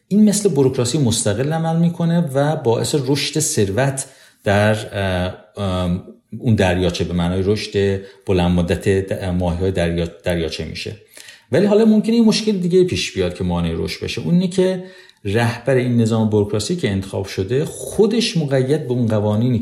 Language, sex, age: Persian, male, 50-69